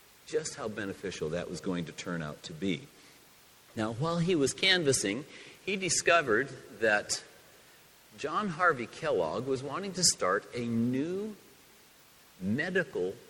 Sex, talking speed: male, 130 wpm